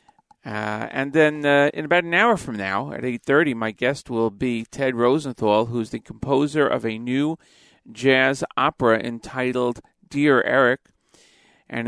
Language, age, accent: English, 40-59, American